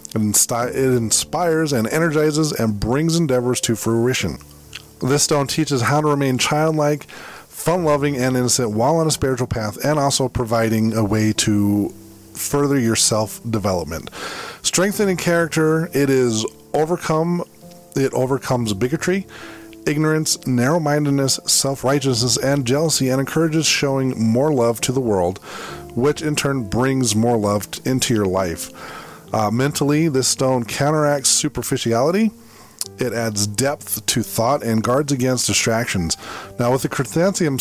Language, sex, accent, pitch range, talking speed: English, male, American, 110-150 Hz, 130 wpm